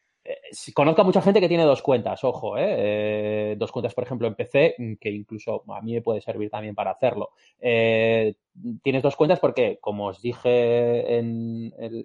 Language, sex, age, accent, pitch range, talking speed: Spanish, male, 20-39, Spanish, 115-160 Hz, 185 wpm